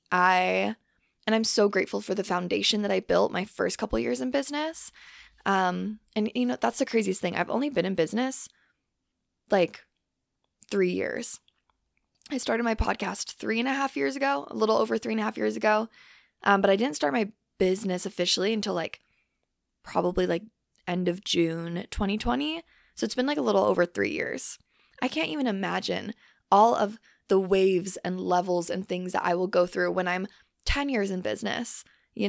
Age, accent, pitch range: 20-39, American, 180-225 Hz